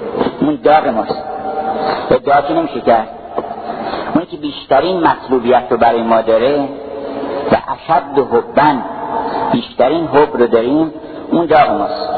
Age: 50-69